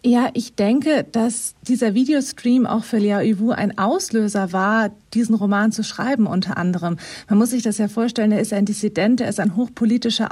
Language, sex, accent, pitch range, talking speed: German, female, German, 205-235 Hz, 190 wpm